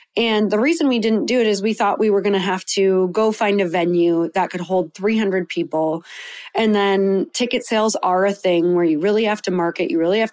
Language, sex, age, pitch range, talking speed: English, female, 30-49, 180-220 Hz, 240 wpm